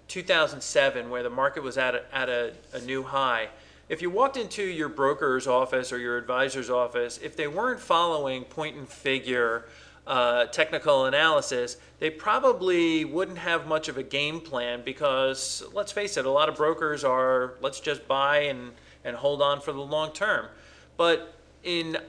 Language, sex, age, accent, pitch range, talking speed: English, male, 40-59, American, 130-170 Hz, 170 wpm